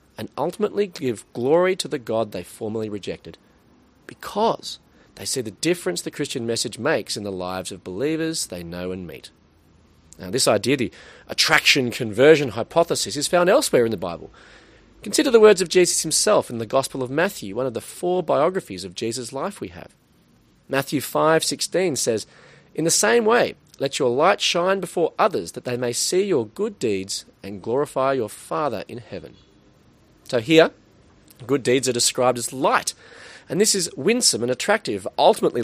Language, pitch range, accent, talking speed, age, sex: English, 110-180 Hz, Australian, 170 wpm, 30-49, male